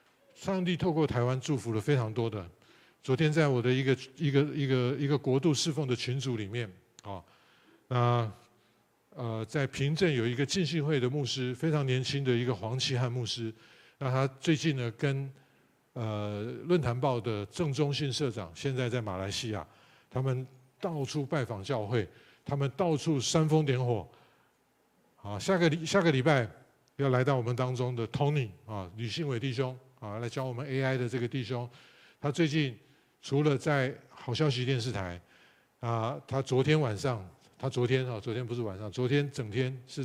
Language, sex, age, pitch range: Chinese, male, 50-69, 115-145 Hz